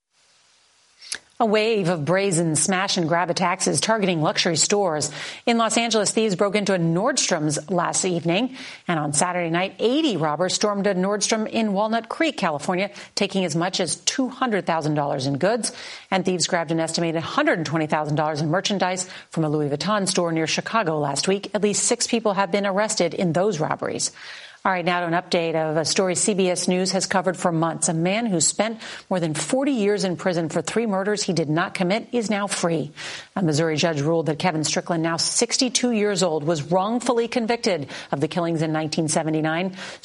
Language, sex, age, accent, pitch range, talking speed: English, female, 40-59, American, 165-210 Hz, 180 wpm